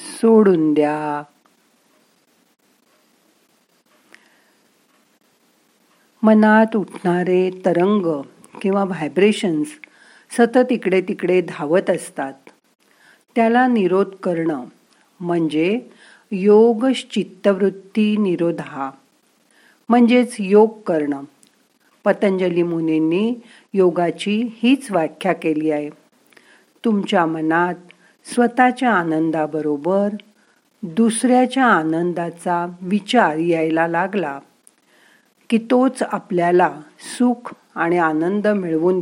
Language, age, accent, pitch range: Marathi, 50-69, native, 170-230 Hz